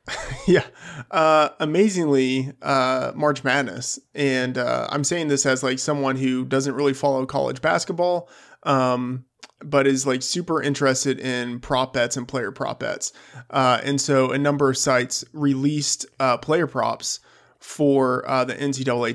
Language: English